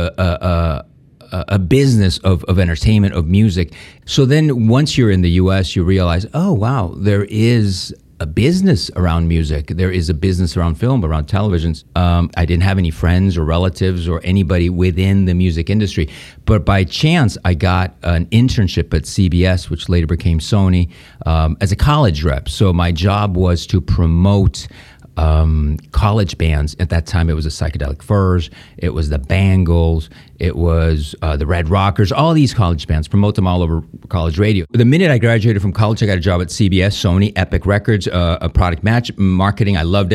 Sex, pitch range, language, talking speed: male, 85-100 Hz, Spanish, 185 wpm